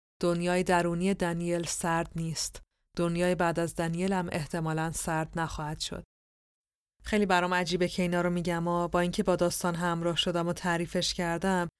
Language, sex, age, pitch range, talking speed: Persian, female, 30-49, 160-190 Hz, 160 wpm